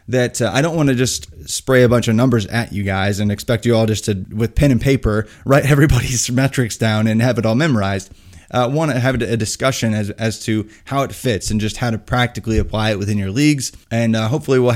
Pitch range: 110-130 Hz